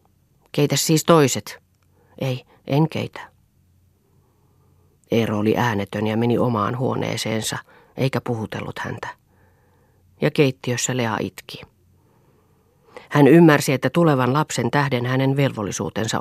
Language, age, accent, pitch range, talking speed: Finnish, 40-59, native, 110-145 Hz, 100 wpm